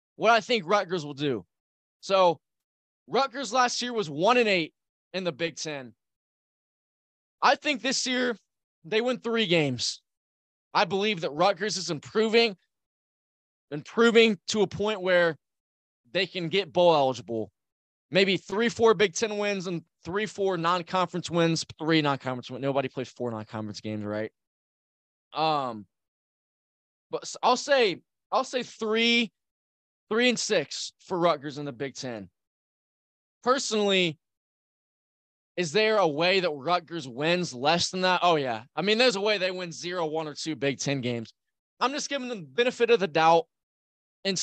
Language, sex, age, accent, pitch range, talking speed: English, male, 20-39, American, 140-205 Hz, 155 wpm